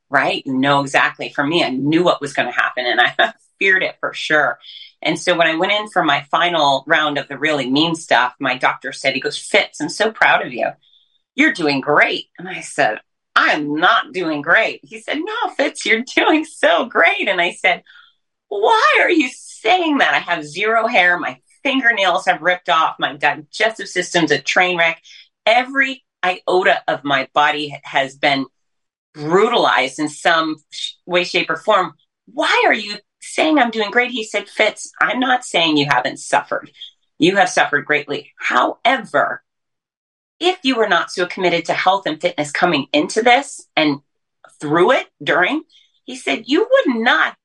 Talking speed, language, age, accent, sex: 180 wpm, English, 30-49, American, female